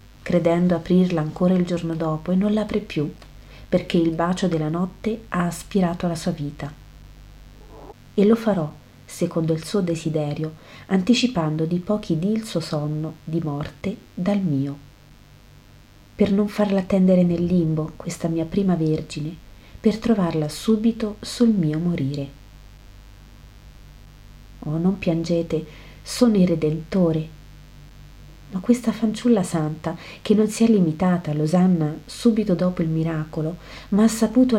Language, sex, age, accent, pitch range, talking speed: Italian, female, 40-59, native, 160-200 Hz, 135 wpm